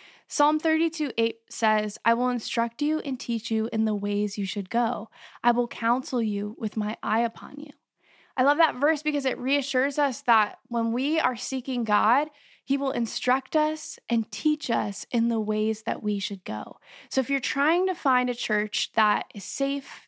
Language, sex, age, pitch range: English, female, 10-29, 220-275 Hz